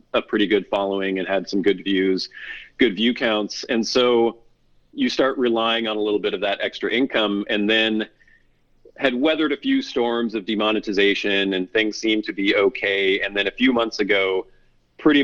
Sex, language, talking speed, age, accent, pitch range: male, English, 185 wpm, 40-59, American, 100-125 Hz